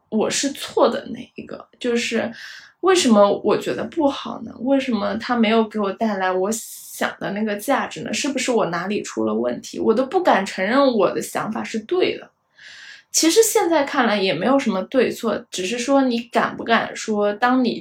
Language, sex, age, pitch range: Chinese, female, 20-39, 210-260 Hz